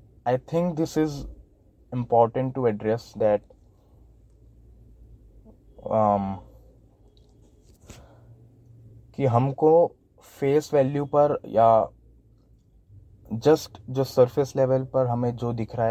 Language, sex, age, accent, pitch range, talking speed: Hindi, male, 20-39, native, 110-130 Hz, 85 wpm